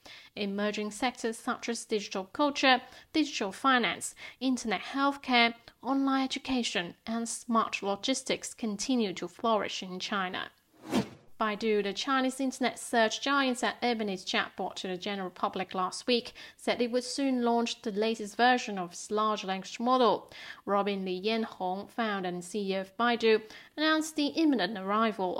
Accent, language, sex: British, English, female